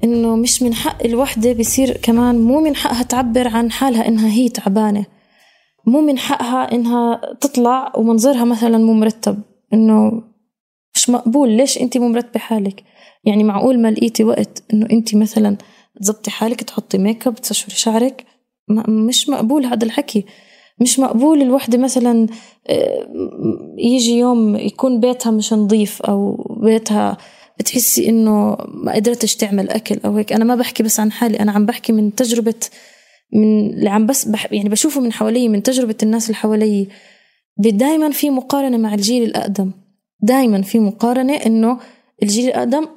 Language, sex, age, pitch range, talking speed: Arabic, female, 20-39, 215-255 Hz, 150 wpm